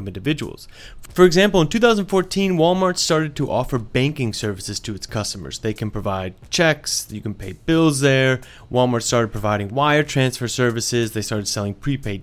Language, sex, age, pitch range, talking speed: English, male, 30-49, 105-140 Hz, 160 wpm